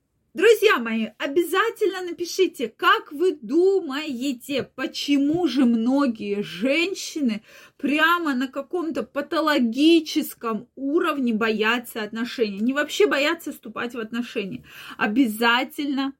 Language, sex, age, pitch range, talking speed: Russian, female, 20-39, 230-310 Hz, 95 wpm